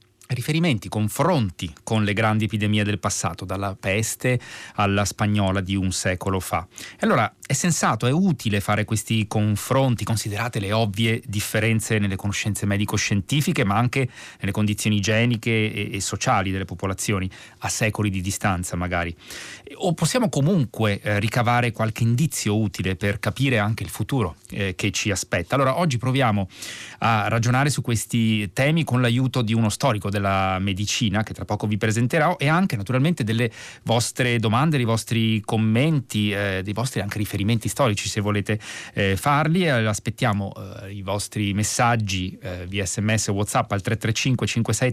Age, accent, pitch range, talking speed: 30-49, native, 100-125 Hz, 150 wpm